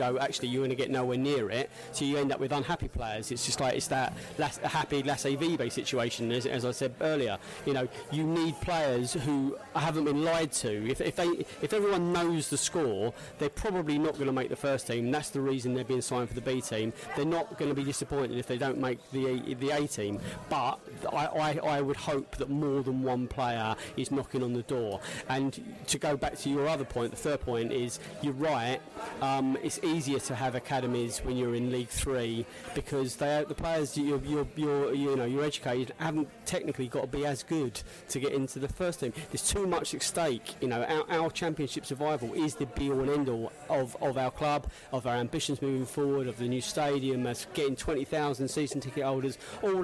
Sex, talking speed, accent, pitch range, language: male, 220 wpm, British, 130-150 Hz, English